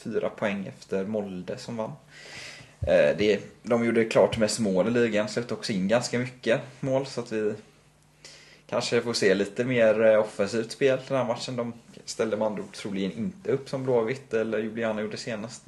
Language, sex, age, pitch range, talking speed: Swedish, male, 20-39, 100-120 Hz, 170 wpm